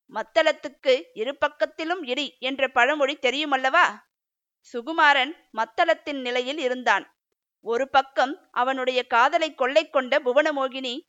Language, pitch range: Tamil, 255-310 Hz